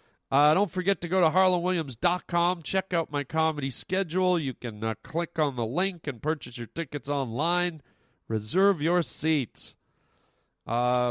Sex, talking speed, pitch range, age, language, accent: male, 150 wpm, 125-175 Hz, 40-59, English, American